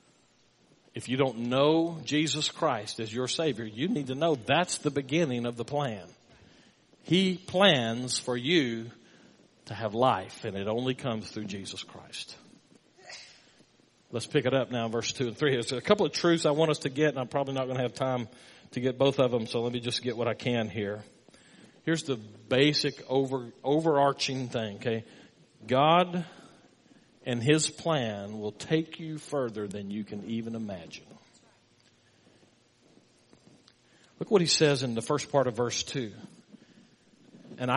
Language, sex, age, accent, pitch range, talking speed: English, male, 50-69, American, 115-150 Hz, 165 wpm